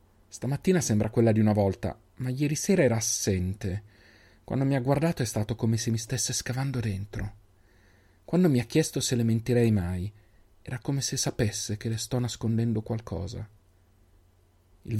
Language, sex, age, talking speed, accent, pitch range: Italian, male, 40-59, 165 wpm, native, 100-125 Hz